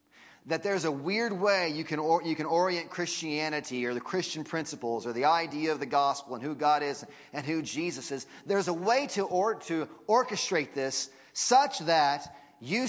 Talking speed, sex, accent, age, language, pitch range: 190 wpm, male, American, 30-49, English, 145-185 Hz